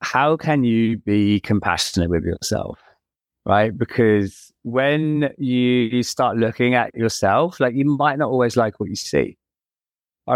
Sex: male